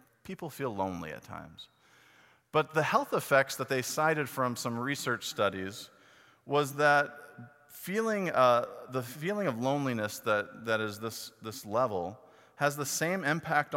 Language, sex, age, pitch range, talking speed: English, male, 40-59, 120-160 Hz, 150 wpm